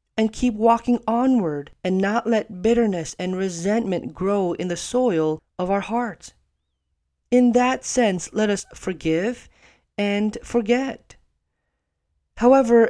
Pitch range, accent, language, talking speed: 170-235 Hz, American, English, 120 wpm